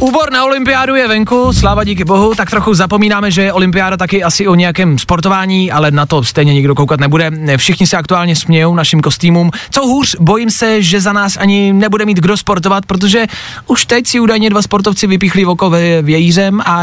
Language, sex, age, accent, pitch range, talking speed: Czech, male, 20-39, native, 140-215 Hz, 195 wpm